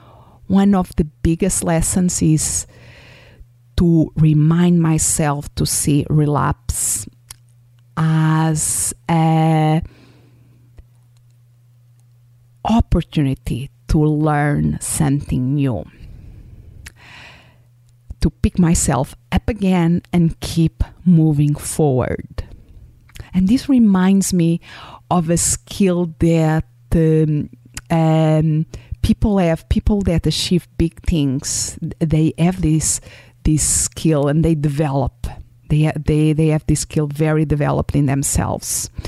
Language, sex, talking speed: English, female, 95 wpm